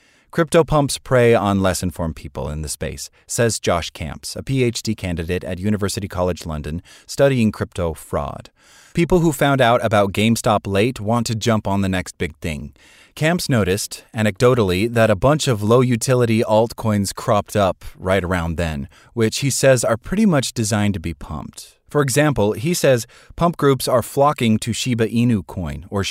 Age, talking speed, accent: 30-49, 170 wpm, American